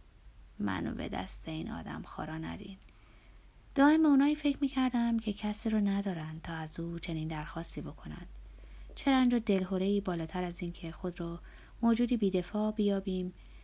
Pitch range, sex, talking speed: 160-205 Hz, female, 145 wpm